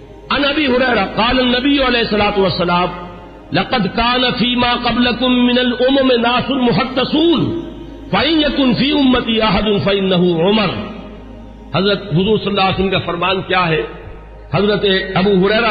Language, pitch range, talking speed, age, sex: Urdu, 180-245 Hz, 60 wpm, 50-69, male